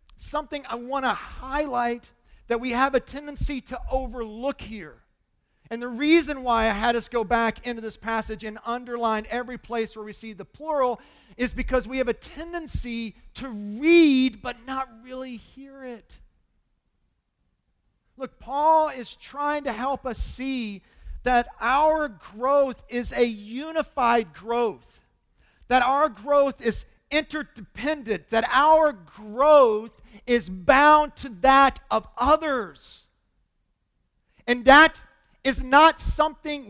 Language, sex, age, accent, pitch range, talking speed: English, male, 40-59, American, 220-290 Hz, 130 wpm